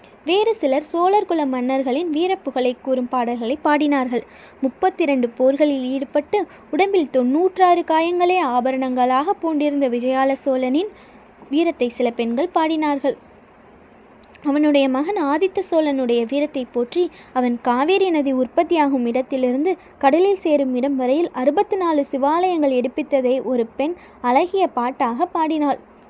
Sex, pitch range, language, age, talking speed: female, 260-340 Hz, Tamil, 20-39, 105 wpm